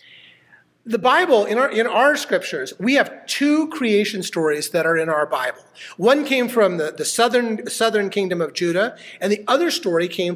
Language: English